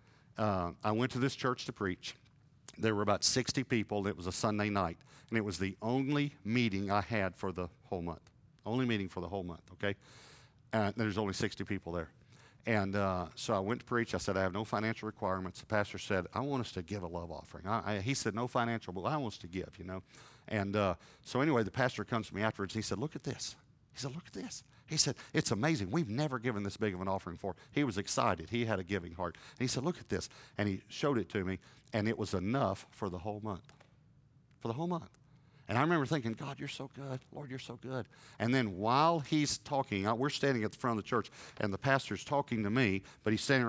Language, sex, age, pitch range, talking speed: English, male, 50-69, 100-135 Hz, 250 wpm